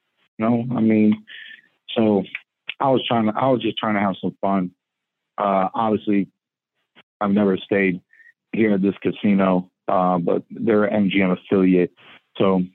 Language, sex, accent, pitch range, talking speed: English, male, American, 95-115 Hz, 150 wpm